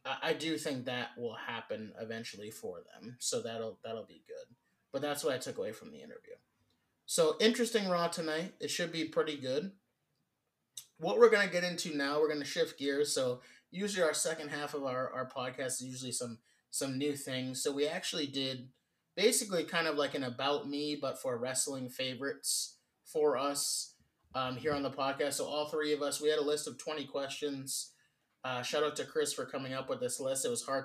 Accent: American